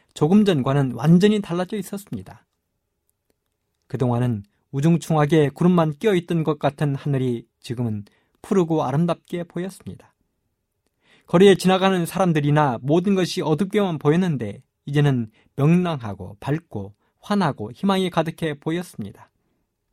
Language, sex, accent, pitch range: Korean, male, native, 115-170 Hz